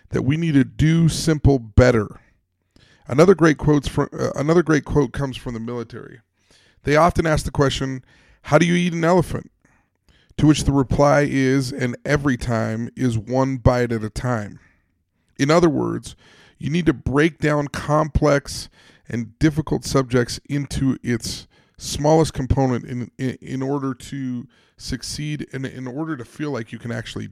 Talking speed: 165 wpm